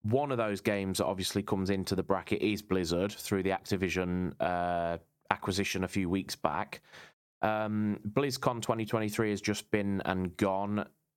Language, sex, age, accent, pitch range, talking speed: English, male, 20-39, British, 95-105 Hz, 155 wpm